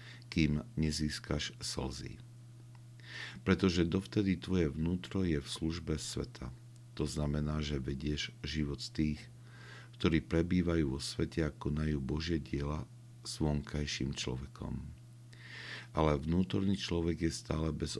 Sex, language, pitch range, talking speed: male, Slovak, 75-115 Hz, 115 wpm